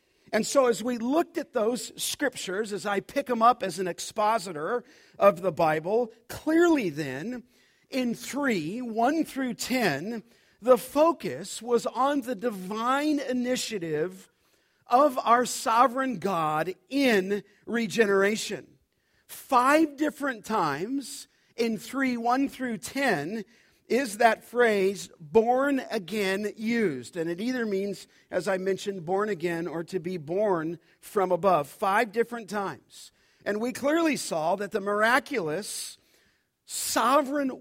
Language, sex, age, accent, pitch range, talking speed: English, male, 50-69, American, 195-255 Hz, 125 wpm